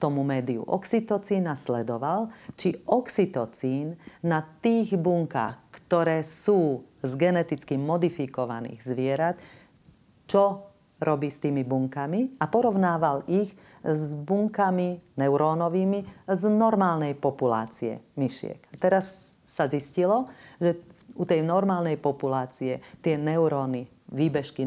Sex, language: female, Slovak